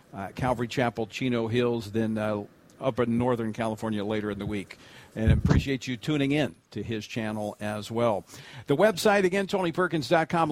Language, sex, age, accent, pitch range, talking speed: English, male, 50-69, American, 120-165 Hz, 170 wpm